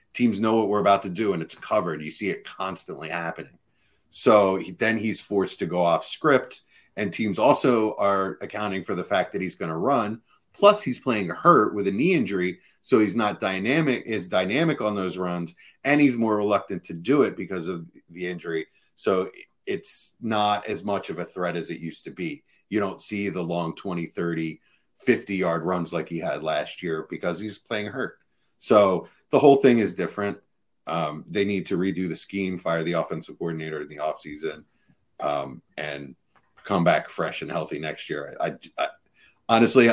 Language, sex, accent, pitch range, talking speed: English, male, American, 90-110 Hz, 190 wpm